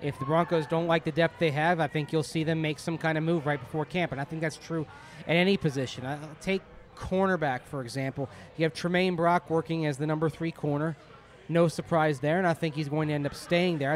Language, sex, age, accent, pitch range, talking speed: English, male, 30-49, American, 150-175 Hz, 255 wpm